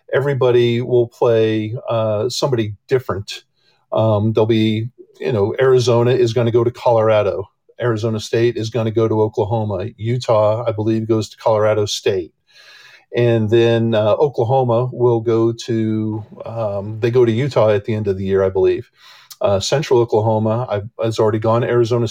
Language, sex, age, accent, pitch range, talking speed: English, male, 50-69, American, 110-125 Hz, 165 wpm